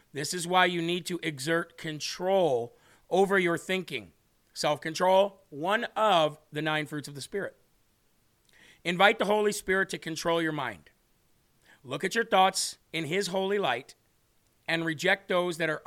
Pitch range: 150-195 Hz